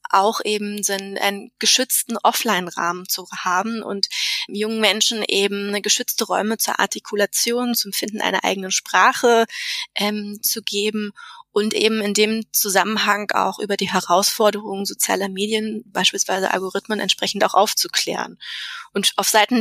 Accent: German